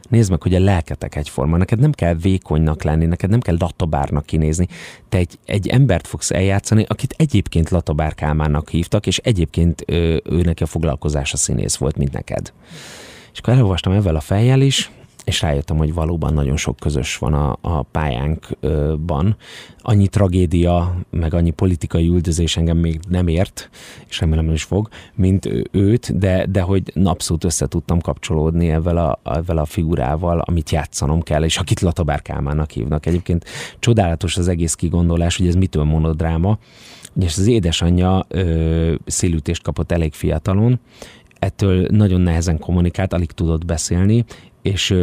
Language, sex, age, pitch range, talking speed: Hungarian, male, 30-49, 80-95 Hz, 150 wpm